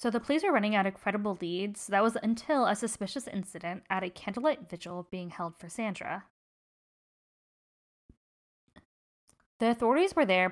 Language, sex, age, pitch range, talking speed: English, female, 10-29, 185-235 Hz, 155 wpm